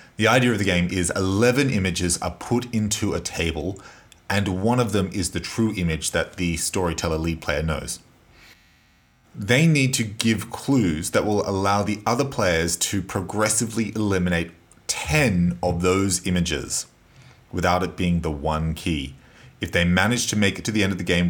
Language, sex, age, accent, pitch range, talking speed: English, male, 30-49, Australian, 85-110 Hz, 180 wpm